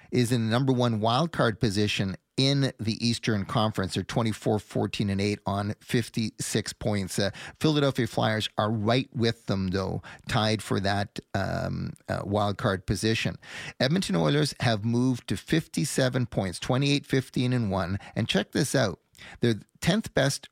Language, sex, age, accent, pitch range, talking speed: English, male, 40-59, American, 110-135 Hz, 150 wpm